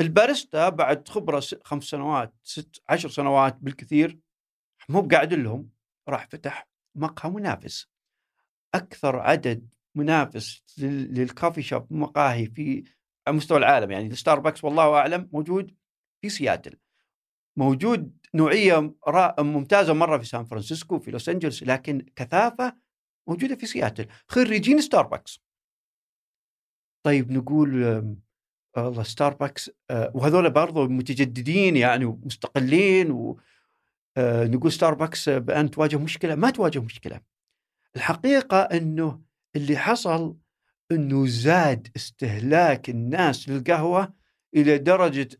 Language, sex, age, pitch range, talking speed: Arabic, male, 50-69, 135-180 Hz, 100 wpm